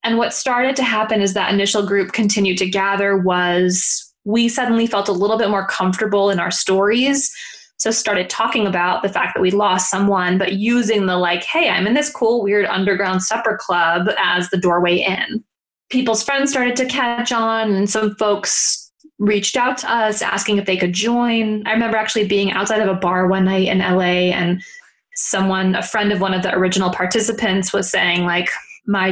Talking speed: 195 wpm